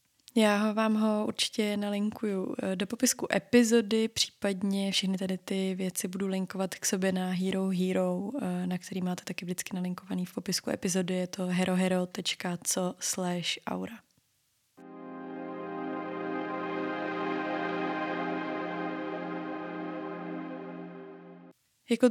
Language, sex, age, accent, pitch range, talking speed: Czech, female, 20-39, native, 190-215 Hz, 90 wpm